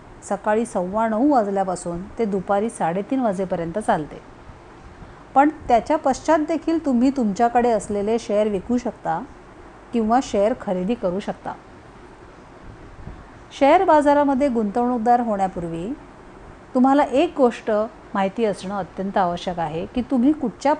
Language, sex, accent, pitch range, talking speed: Marathi, female, native, 205-275 Hz, 115 wpm